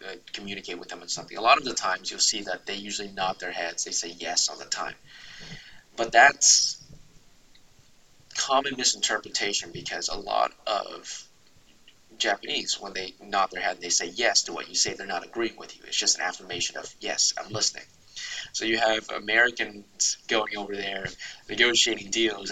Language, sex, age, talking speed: English, male, 20-39, 180 wpm